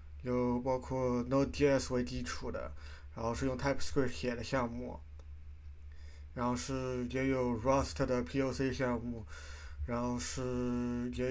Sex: male